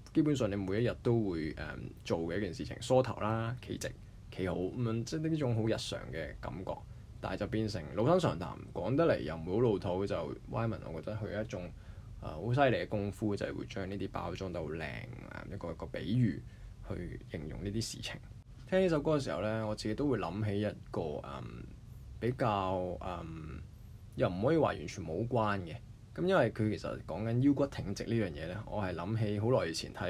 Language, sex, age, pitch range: Chinese, male, 20-39, 95-120 Hz